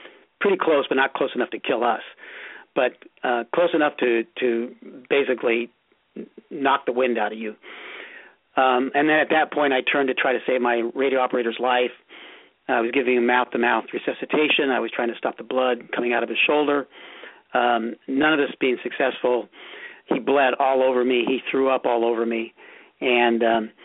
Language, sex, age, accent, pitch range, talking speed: English, male, 50-69, American, 120-145 Hz, 190 wpm